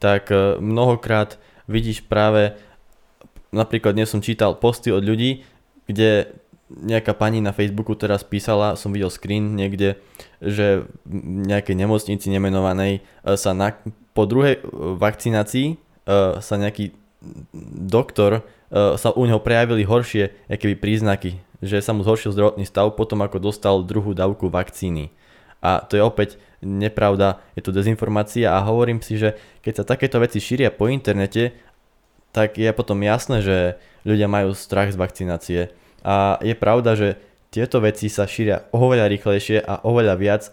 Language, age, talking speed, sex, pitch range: Slovak, 20-39, 140 wpm, male, 100-110 Hz